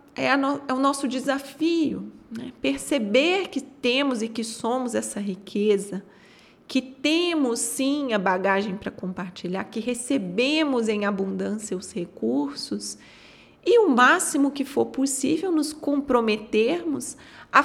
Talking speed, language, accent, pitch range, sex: 120 wpm, Portuguese, Brazilian, 205-270 Hz, female